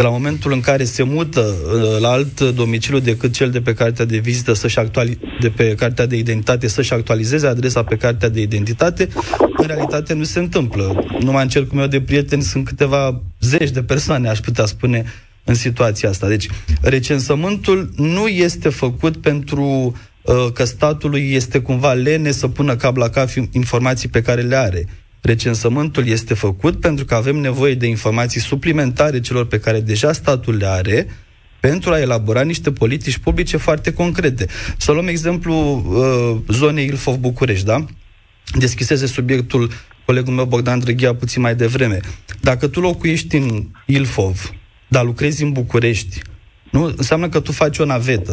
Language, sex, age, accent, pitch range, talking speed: Romanian, male, 20-39, native, 115-145 Hz, 160 wpm